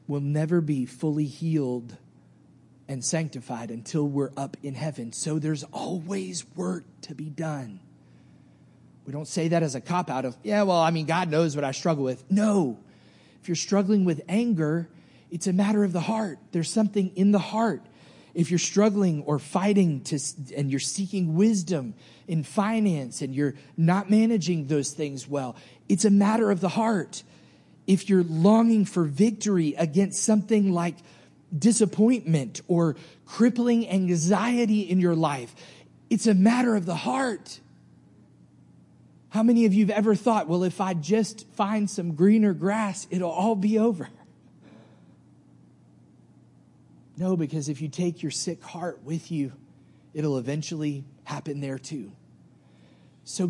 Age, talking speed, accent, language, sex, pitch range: 30-49, 155 wpm, American, English, male, 145-205 Hz